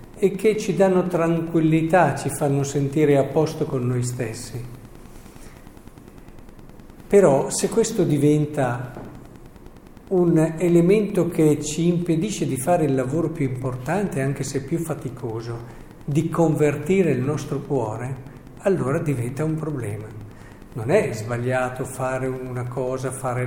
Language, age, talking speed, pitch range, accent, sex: Italian, 50-69, 125 wpm, 130-160 Hz, native, male